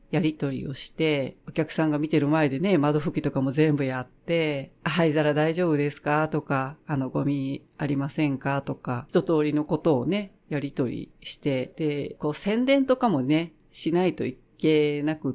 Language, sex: Japanese, female